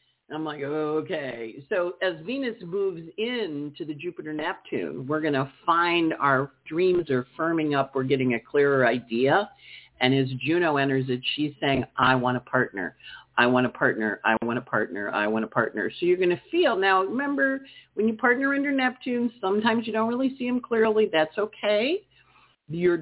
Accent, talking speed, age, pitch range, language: American, 180 wpm, 50-69, 135-190 Hz, English